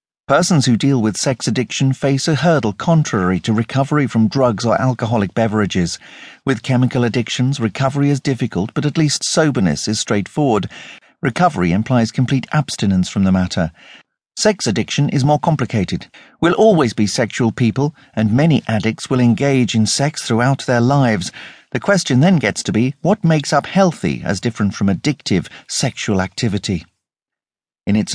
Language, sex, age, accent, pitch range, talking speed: English, male, 50-69, British, 110-150 Hz, 160 wpm